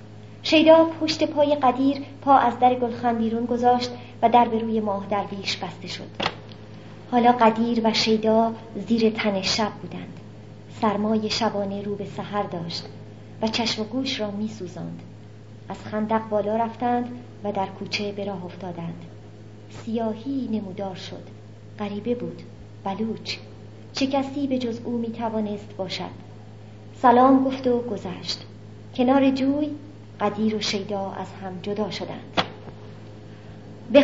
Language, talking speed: Persian, 135 wpm